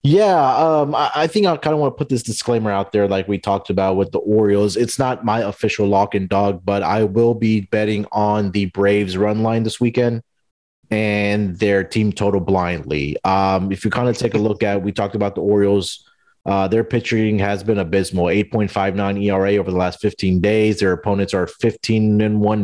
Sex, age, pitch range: male, 30-49, 100-115 Hz